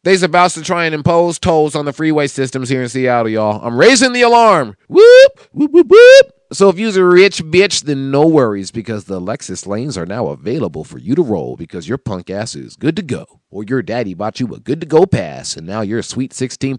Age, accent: 30-49, American